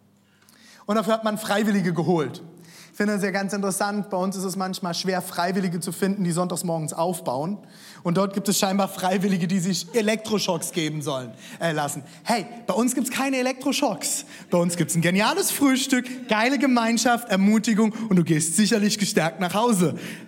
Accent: German